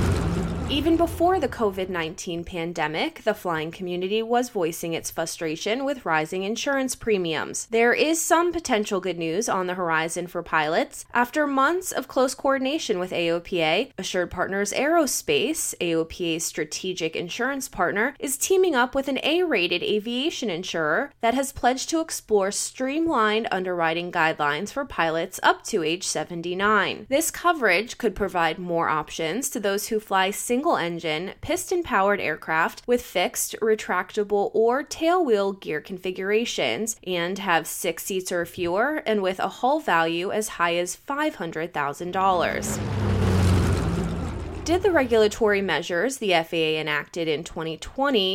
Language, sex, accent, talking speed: English, female, American, 135 wpm